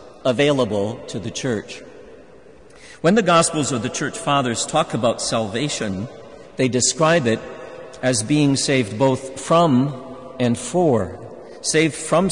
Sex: male